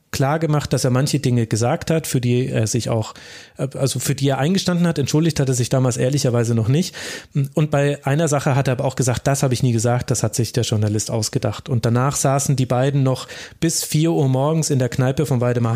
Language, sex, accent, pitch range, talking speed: German, male, German, 125-150 Hz, 235 wpm